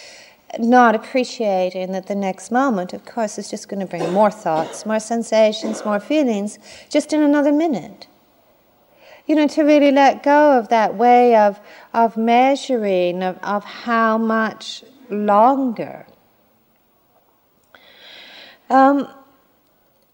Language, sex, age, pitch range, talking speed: English, female, 50-69, 190-260 Hz, 120 wpm